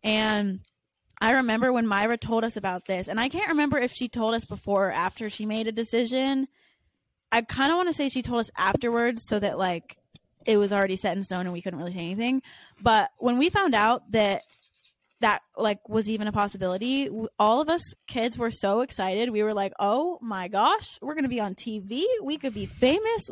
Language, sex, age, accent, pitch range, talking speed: English, female, 10-29, American, 195-250 Hz, 215 wpm